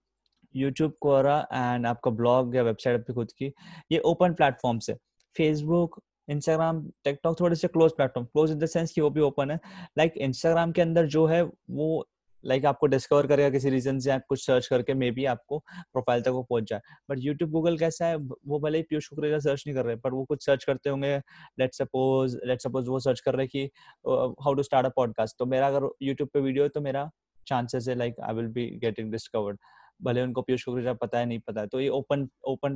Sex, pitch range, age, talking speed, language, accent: male, 125-150 Hz, 20-39, 85 wpm, Hindi, native